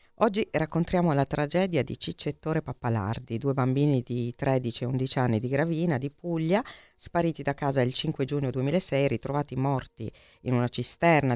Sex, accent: female, native